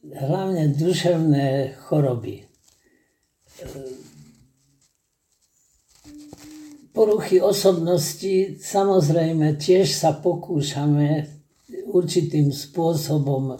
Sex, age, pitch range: male, 60-79, 145-170 Hz